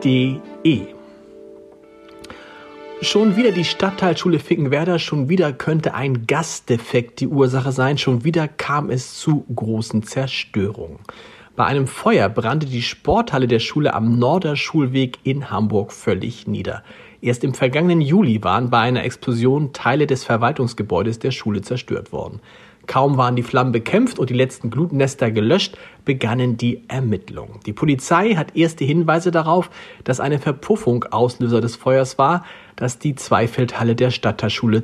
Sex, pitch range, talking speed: male, 115-150 Hz, 140 wpm